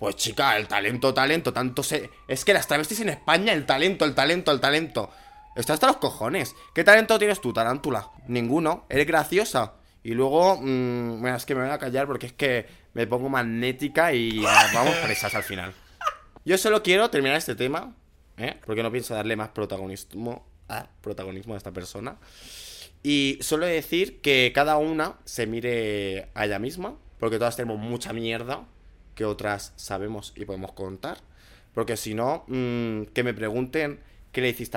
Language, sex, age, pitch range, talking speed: Spanish, male, 20-39, 105-145 Hz, 180 wpm